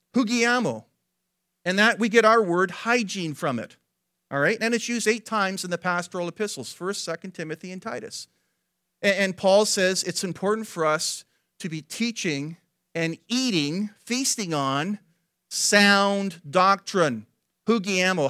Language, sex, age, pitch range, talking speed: English, male, 40-59, 170-225 Hz, 140 wpm